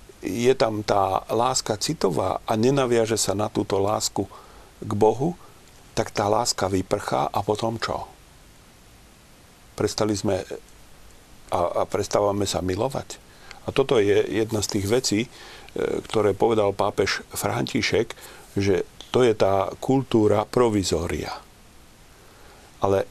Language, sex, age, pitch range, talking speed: Slovak, male, 40-59, 100-120 Hz, 115 wpm